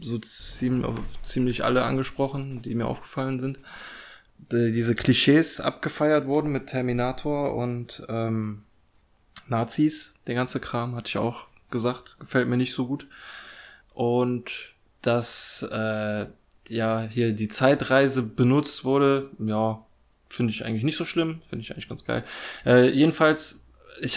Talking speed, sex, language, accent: 135 wpm, male, German, German